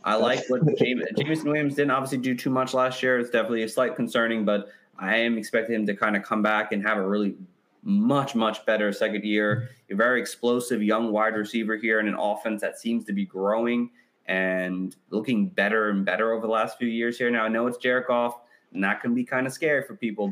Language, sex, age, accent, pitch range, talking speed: English, male, 20-39, American, 105-135 Hz, 230 wpm